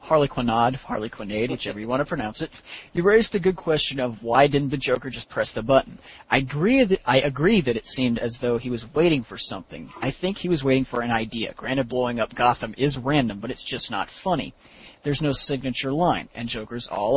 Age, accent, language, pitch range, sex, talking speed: 30-49, American, English, 115-145 Hz, male, 215 wpm